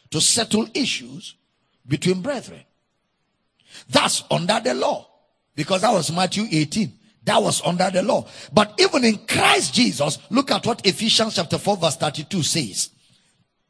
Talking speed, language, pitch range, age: 145 wpm, English, 180-275 Hz, 50-69